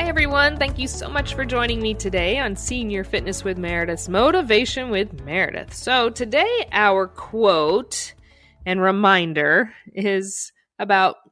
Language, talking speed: English, 140 wpm